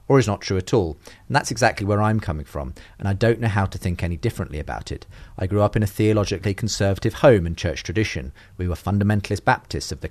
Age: 40-59